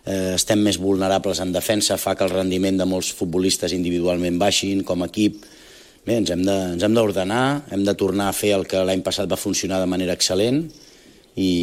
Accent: Spanish